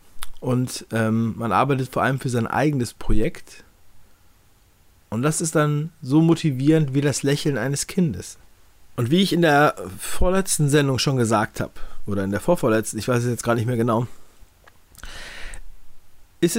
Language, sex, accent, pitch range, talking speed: German, male, German, 110-150 Hz, 160 wpm